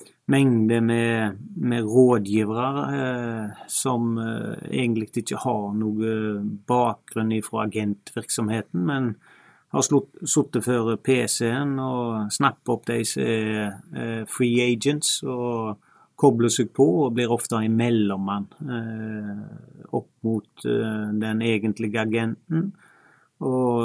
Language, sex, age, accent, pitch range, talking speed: English, male, 30-49, Swedish, 110-125 Hz, 110 wpm